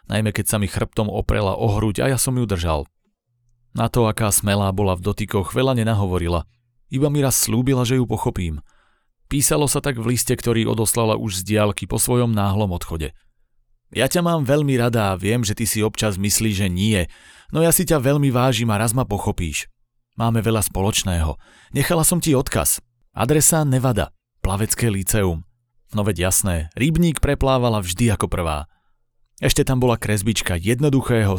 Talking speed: 170 wpm